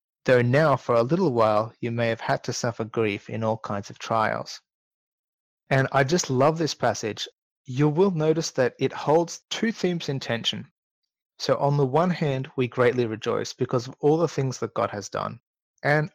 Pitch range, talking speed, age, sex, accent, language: 120-155 Hz, 195 wpm, 30-49, male, Australian, English